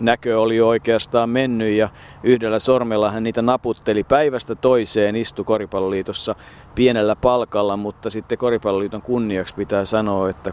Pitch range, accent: 95-115 Hz, native